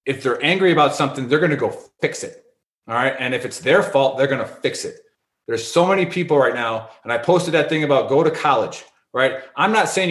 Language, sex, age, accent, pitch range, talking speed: English, male, 30-49, American, 140-200 Hz, 250 wpm